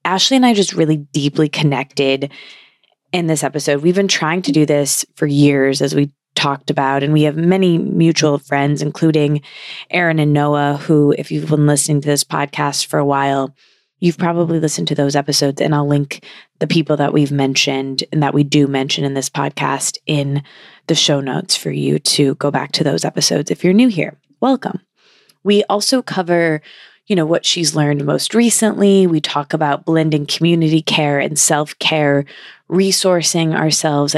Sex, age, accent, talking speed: female, 20-39, American, 180 wpm